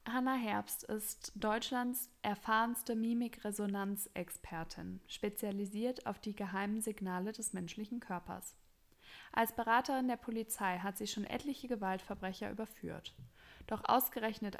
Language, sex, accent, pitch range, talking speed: German, female, German, 200-225 Hz, 105 wpm